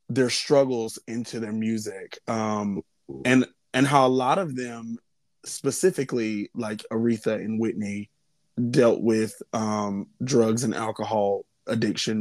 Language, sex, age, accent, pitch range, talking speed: English, male, 20-39, American, 110-130 Hz, 125 wpm